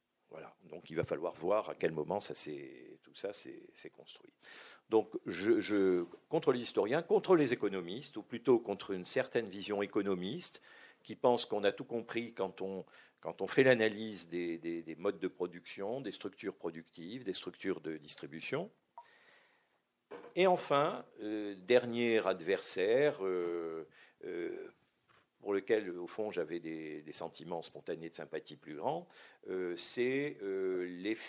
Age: 50-69